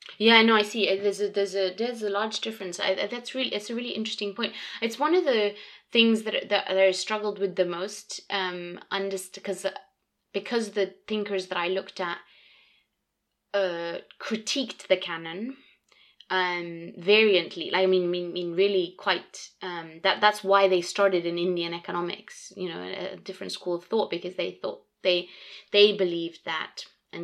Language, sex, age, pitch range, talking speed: English, female, 20-39, 175-215 Hz, 175 wpm